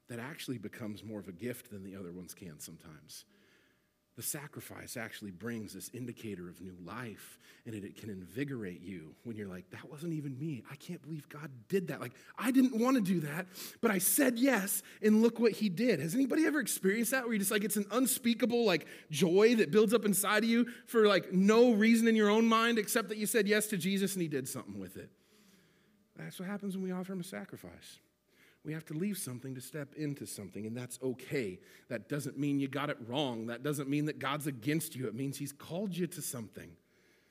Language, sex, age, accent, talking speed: English, male, 40-59, American, 225 wpm